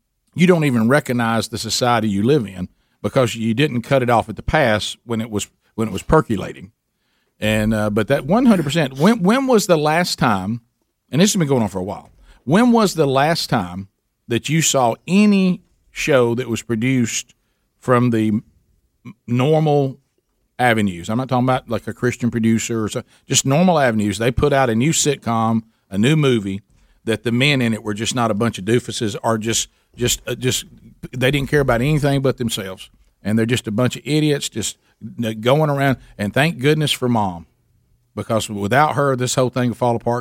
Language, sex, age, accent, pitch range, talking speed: English, male, 50-69, American, 105-135 Hz, 200 wpm